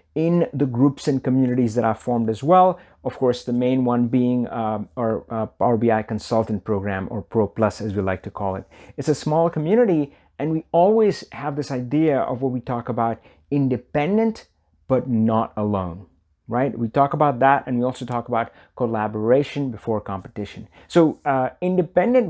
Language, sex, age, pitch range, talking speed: English, male, 30-49, 115-155 Hz, 180 wpm